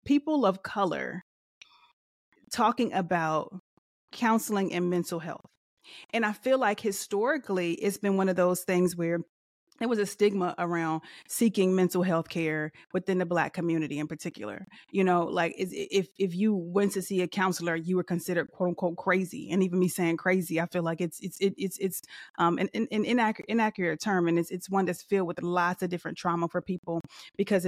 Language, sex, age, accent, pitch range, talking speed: English, female, 30-49, American, 170-200 Hz, 185 wpm